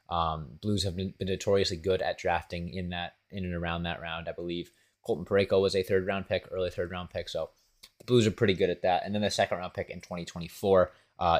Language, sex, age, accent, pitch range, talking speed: English, male, 20-39, American, 90-110 Hz, 240 wpm